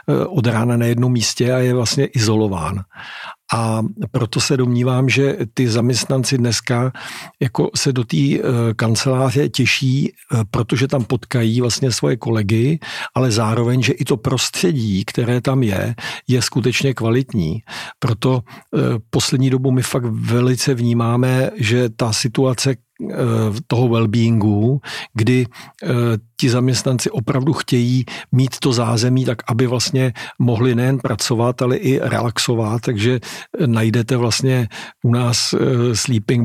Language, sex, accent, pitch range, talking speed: Czech, male, native, 115-130 Hz, 125 wpm